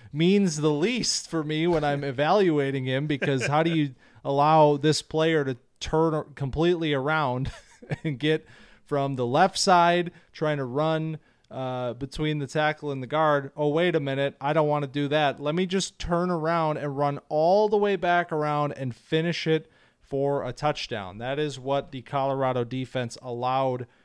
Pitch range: 130-155 Hz